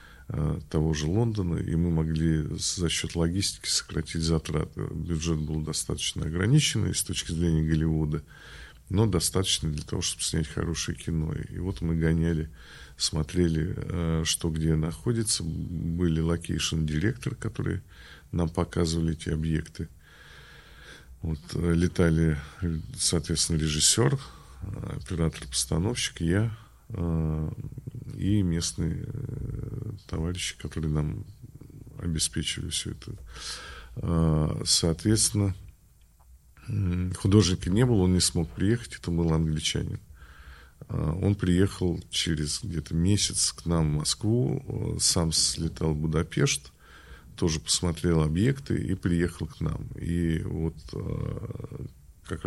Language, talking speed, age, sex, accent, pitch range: Russian, 105 wpm, 40-59, male, native, 80-100 Hz